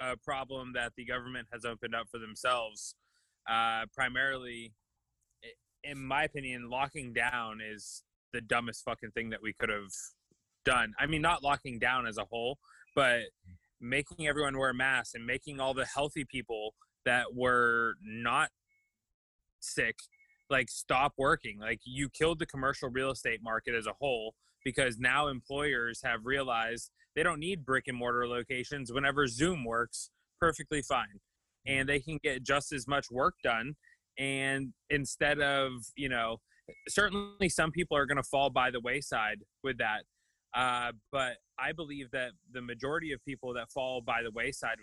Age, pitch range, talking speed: 20-39, 115-140 Hz, 160 wpm